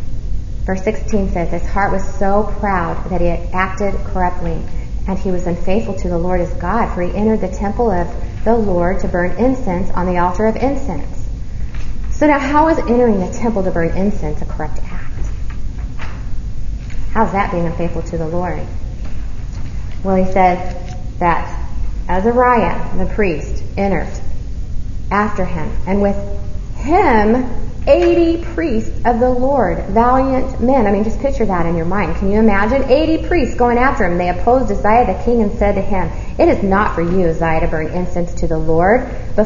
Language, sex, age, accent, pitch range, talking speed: English, female, 30-49, American, 170-225 Hz, 175 wpm